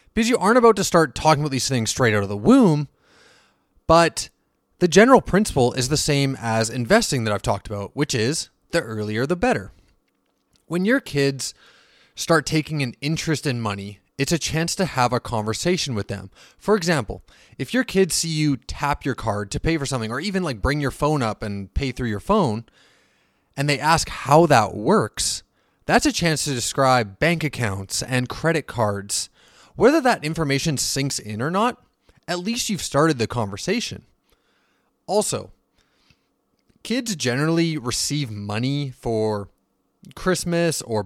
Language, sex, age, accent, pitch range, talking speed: English, male, 20-39, American, 115-165 Hz, 170 wpm